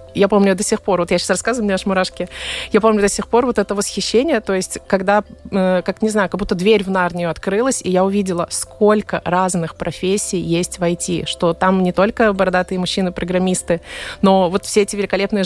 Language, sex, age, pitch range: Russian, female, 20-39, 180-210 Hz